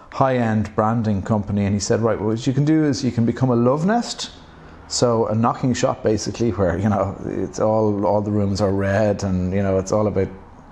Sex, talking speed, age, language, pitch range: male, 220 wpm, 30-49, English, 100-120 Hz